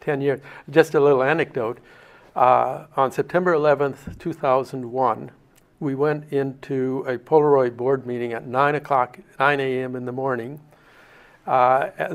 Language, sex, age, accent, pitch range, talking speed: English, male, 60-79, American, 125-145 Hz, 135 wpm